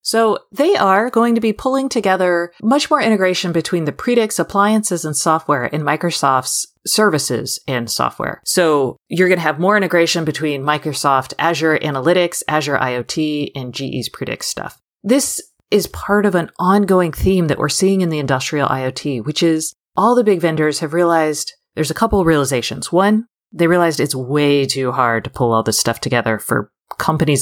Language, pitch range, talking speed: English, 135-190 Hz, 175 wpm